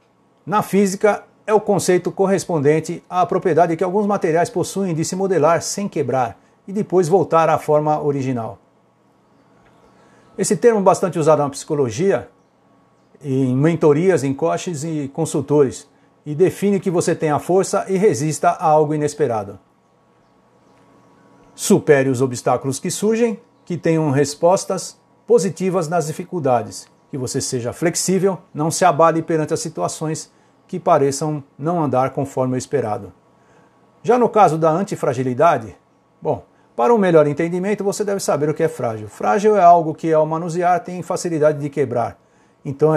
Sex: male